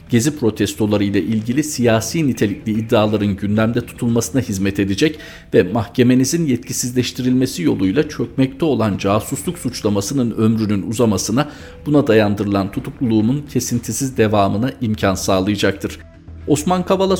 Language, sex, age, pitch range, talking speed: Turkish, male, 50-69, 110-150 Hz, 100 wpm